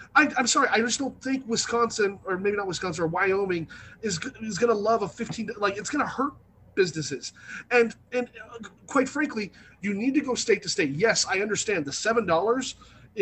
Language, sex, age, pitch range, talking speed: English, male, 30-49, 165-235 Hz, 190 wpm